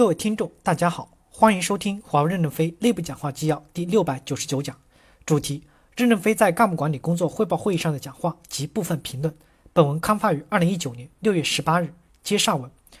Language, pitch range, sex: Chinese, 145-195 Hz, male